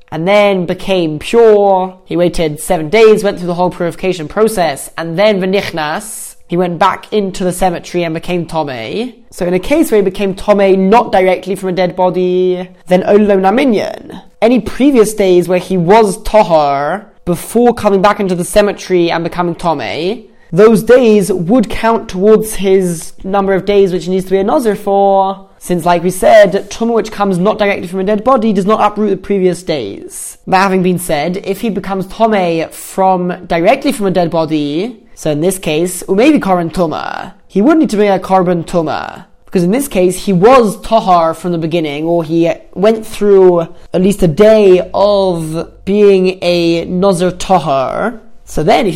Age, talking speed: 20-39, 185 wpm